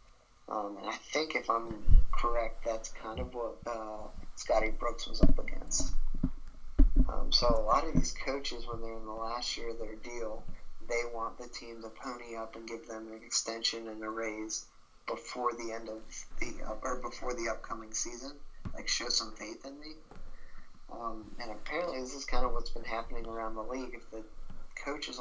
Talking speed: 190 wpm